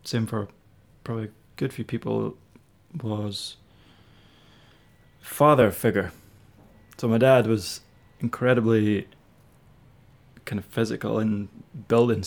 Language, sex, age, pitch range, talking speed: English, male, 20-39, 105-120 Hz, 100 wpm